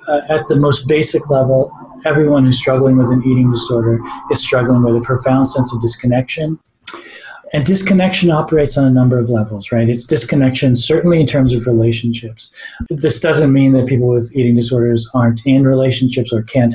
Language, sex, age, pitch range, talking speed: English, male, 40-59, 120-140 Hz, 180 wpm